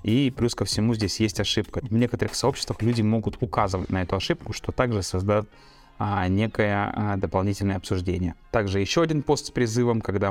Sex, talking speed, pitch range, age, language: male, 170 wpm, 95-115 Hz, 20-39, Russian